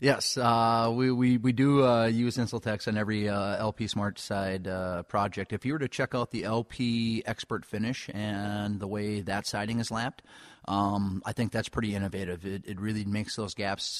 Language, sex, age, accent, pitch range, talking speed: English, male, 30-49, American, 100-115 Hz, 195 wpm